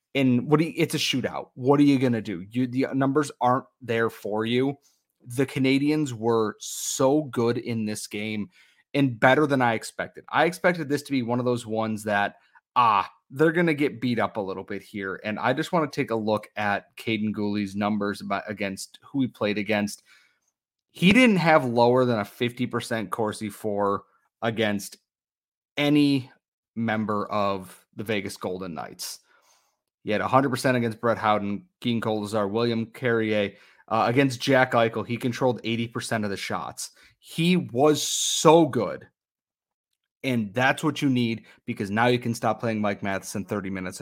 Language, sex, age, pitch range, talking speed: English, male, 30-49, 105-130 Hz, 175 wpm